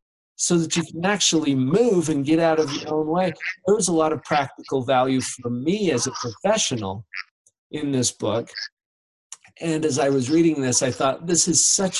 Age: 50-69